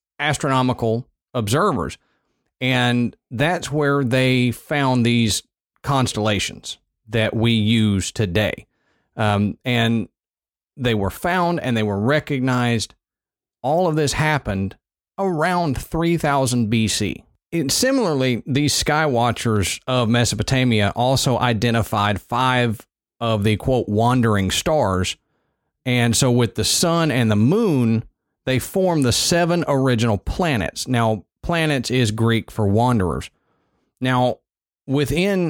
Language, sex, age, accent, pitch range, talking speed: English, male, 40-59, American, 110-135 Hz, 110 wpm